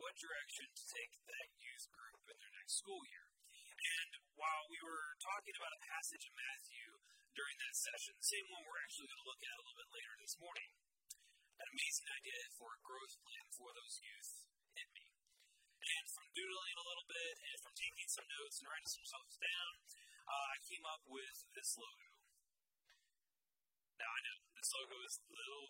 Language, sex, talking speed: English, male, 190 wpm